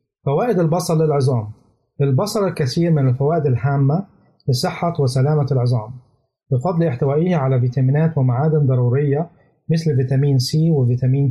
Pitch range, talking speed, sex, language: 140-165 Hz, 110 wpm, male, Arabic